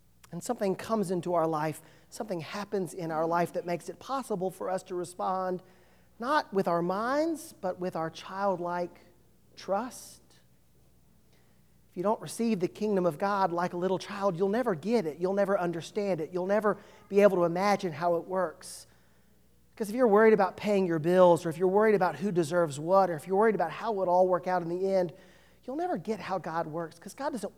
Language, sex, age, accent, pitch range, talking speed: English, male, 40-59, American, 150-200 Hz, 210 wpm